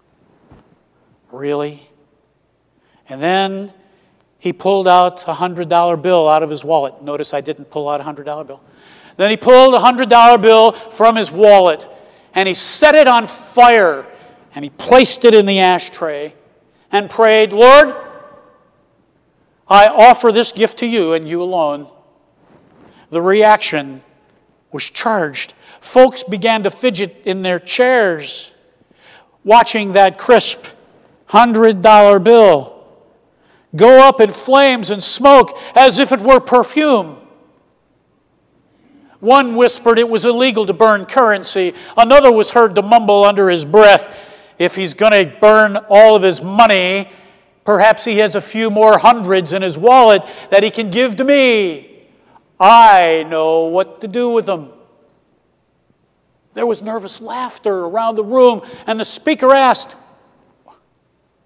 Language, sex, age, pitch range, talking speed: English, male, 50-69, 180-240 Hz, 140 wpm